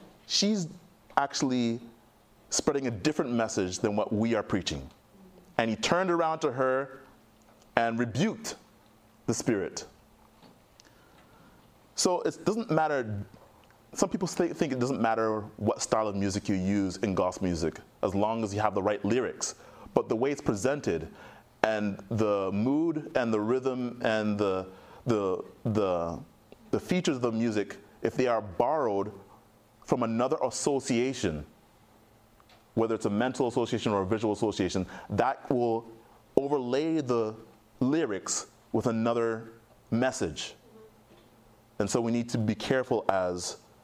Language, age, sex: English, 30-49, male